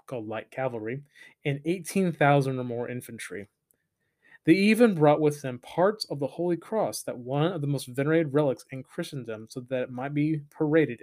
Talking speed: 180 wpm